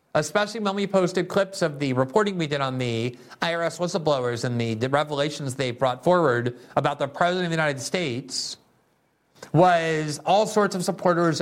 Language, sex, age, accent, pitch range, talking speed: English, male, 50-69, American, 145-180 Hz, 170 wpm